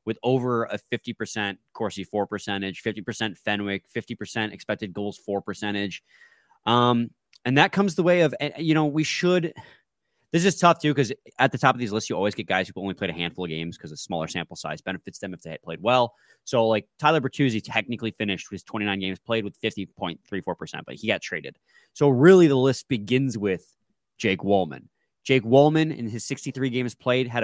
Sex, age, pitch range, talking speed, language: male, 20-39, 105-140 Hz, 200 wpm, English